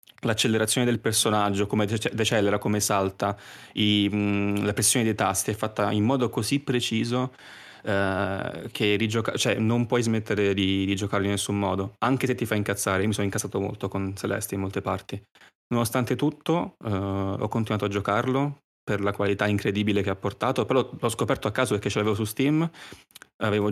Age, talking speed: 20-39, 185 wpm